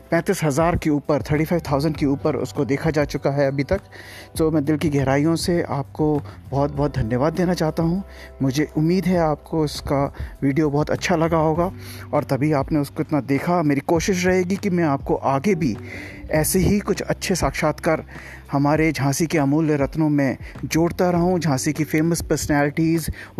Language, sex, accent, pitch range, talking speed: Hindi, male, native, 140-175 Hz, 175 wpm